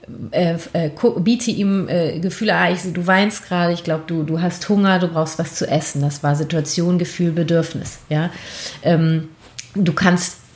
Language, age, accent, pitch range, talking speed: German, 30-49, German, 165-210 Hz, 165 wpm